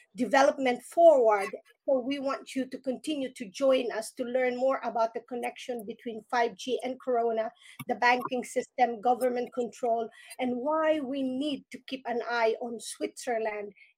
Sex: female